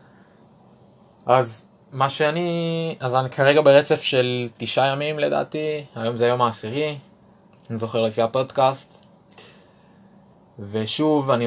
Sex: male